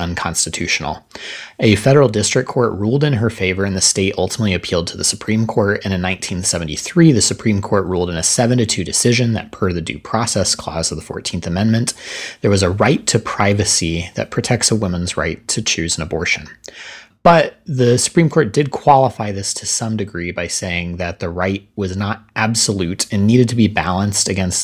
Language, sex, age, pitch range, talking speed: English, male, 30-49, 90-115 Hz, 195 wpm